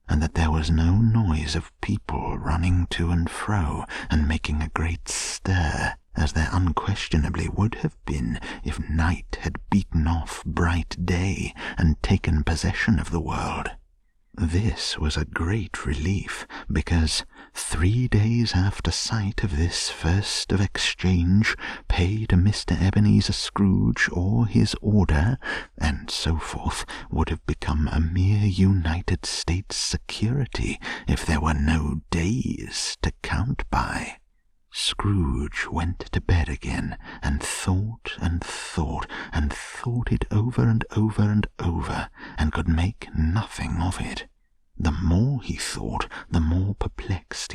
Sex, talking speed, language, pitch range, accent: male, 135 wpm, English, 80-100 Hz, British